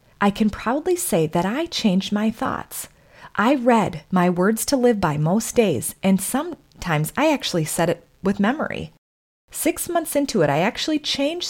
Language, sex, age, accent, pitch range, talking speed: English, female, 30-49, American, 170-240 Hz, 170 wpm